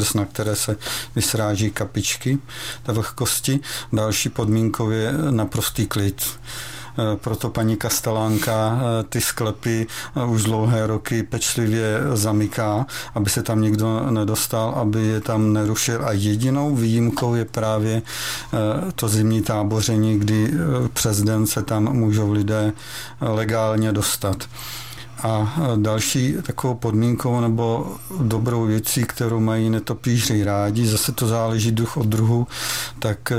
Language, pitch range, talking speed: Czech, 110-120 Hz, 120 wpm